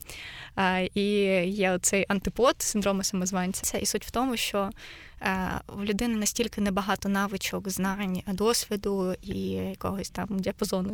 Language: Ukrainian